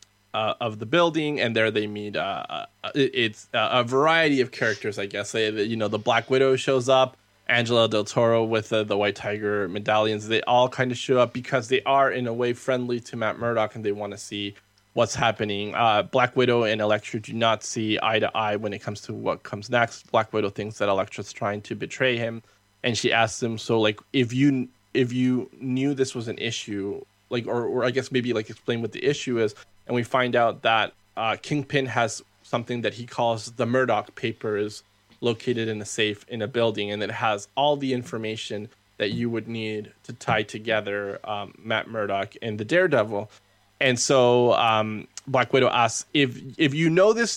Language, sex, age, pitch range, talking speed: English, male, 20-39, 105-125 Hz, 210 wpm